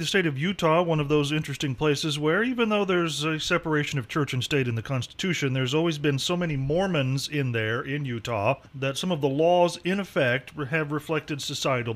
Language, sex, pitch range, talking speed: English, male, 130-165 Hz, 210 wpm